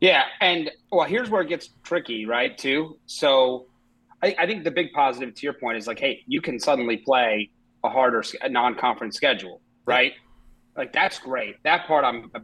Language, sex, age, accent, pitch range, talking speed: English, male, 30-49, American, 120-150 Hz, 195 wpm